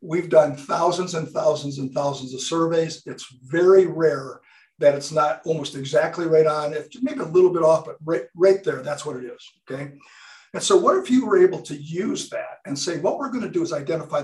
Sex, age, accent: male, 50-69, American